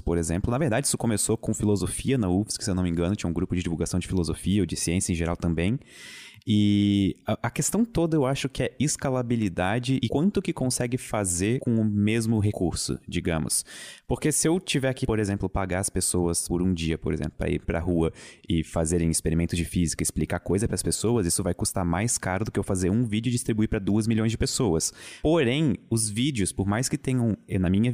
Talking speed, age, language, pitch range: 225 wpm, 20-39, Portuguese, 90-120 Hz